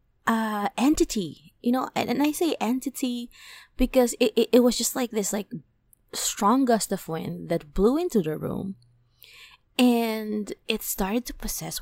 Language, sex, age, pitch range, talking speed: English, female, 20-39, 165-230 Hz, 165 wpm